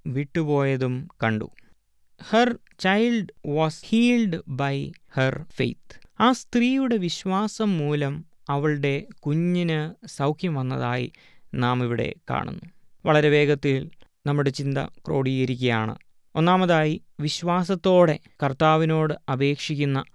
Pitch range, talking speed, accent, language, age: 135-175 Hz, 85 wpm, native, Malayalam, 20-39